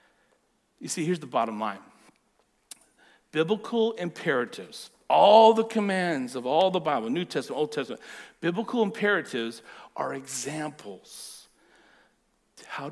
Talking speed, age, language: 110 wpm, 50-69, English